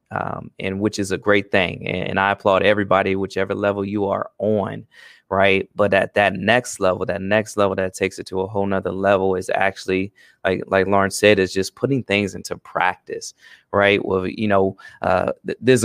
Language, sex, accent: English, male, American